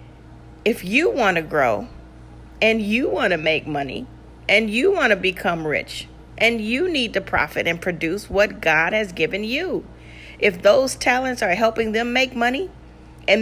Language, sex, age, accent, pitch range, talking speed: English, female, 40-59, American, 135-220 Hz, 170 wpm